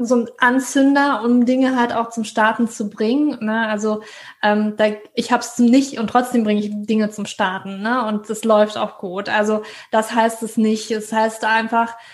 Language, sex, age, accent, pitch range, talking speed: German, female, 20-39, German, 215-245 Hz, 205 wpm